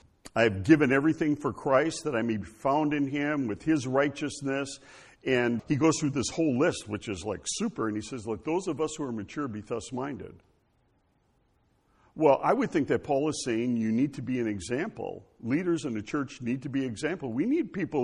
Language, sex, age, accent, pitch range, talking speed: English, male, 60-79, American, 110-160 Hz, 220 wpm